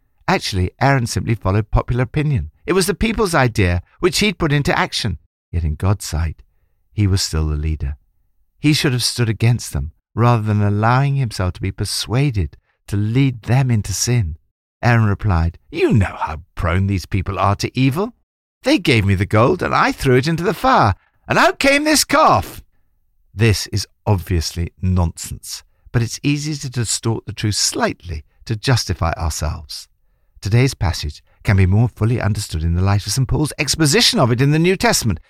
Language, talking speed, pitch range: English, 180 wpm, 85-130 Hz